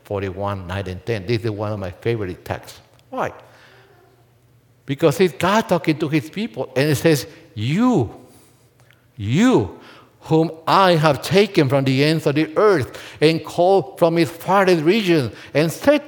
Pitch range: 120-190 Hz